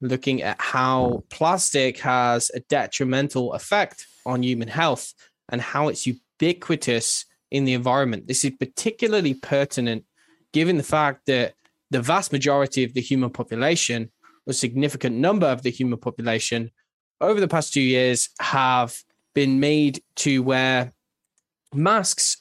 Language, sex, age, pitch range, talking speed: English, male, 10-29, 125-150 Hz, 135 wpm